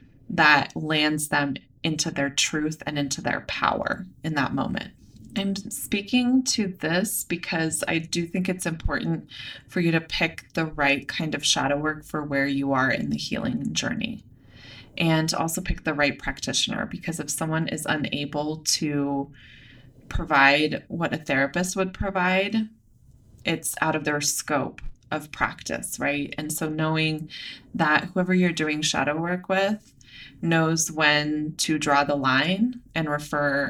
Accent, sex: American, female